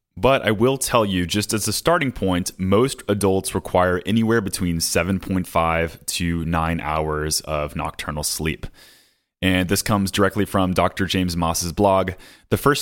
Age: 30-49